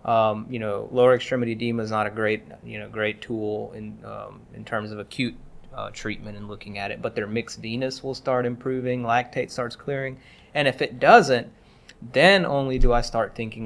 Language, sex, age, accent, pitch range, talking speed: English, male, 20-39, American, 110-130 Hz, 200 wpm